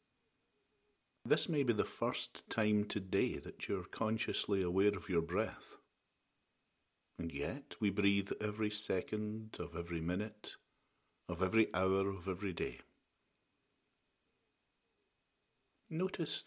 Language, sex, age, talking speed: English, male, 50-69, 110 wpm